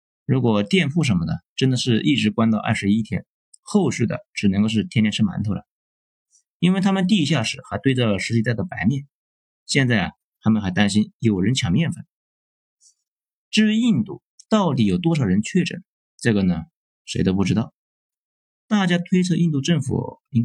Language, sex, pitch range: Chinese, male, 105-170 Hz